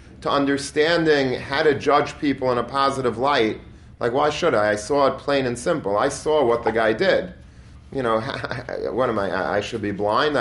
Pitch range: 115-140 Hz